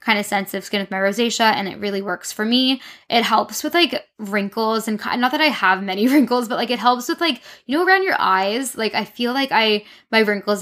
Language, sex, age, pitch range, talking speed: English, female, 10-29, 195-220 Hz, 250 wpm